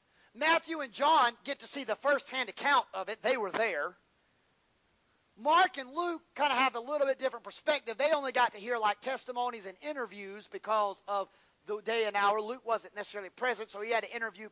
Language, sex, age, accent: English, male, 30-49, American